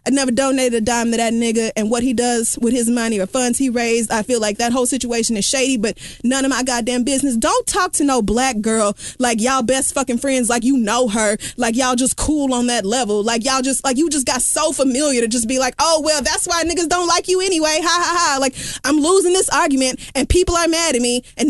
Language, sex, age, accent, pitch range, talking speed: English, female, 20-39, American, 240-310 Hz, 255 wpm